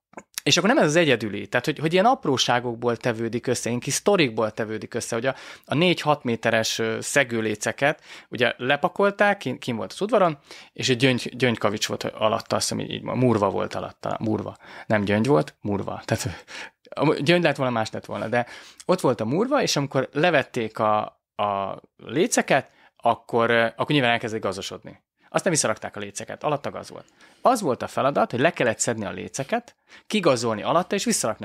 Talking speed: 170 wpm